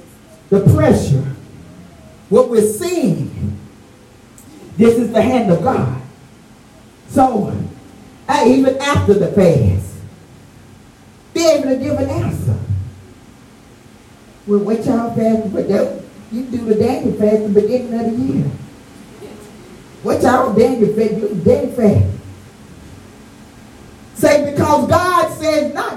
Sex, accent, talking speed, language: male, American, 115 wpm, English